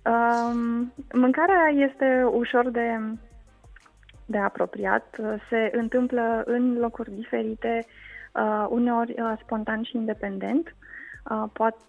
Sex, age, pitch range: female, 20-39, 215-255 Hz